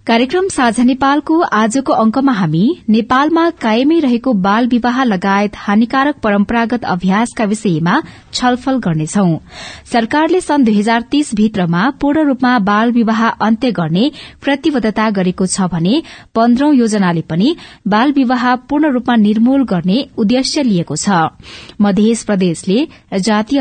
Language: English